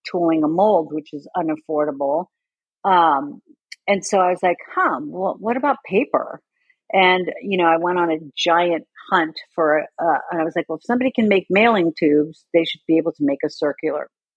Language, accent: English, American